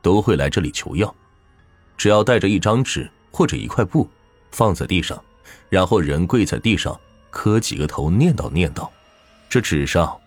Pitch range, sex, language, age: 75-110 Hz, male, Chinese, 30-49